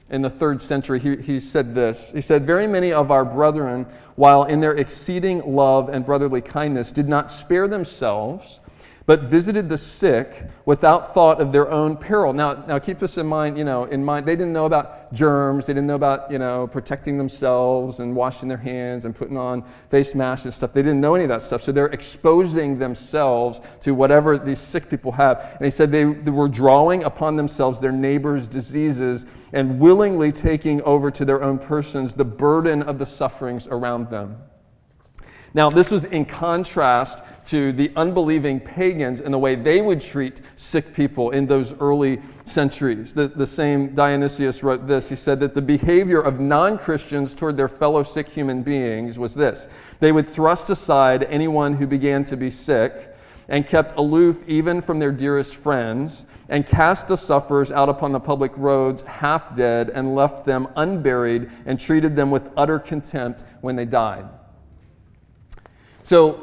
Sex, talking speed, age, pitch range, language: male, 180 wpm, 40-59, 130-150 Hz, English